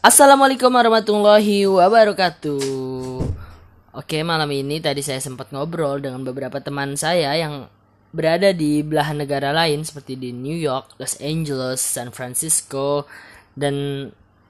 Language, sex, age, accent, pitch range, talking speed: Indonesian, female, 20-39, native, 120-155 Hz, 120 wpm